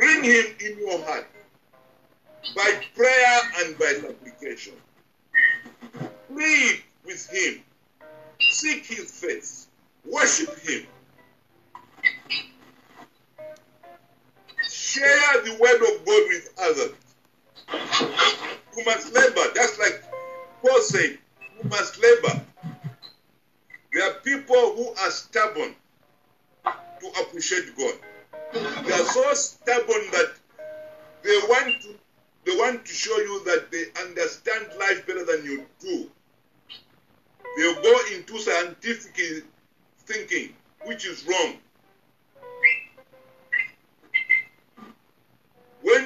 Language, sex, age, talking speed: English, male, 50-69, 95 wpm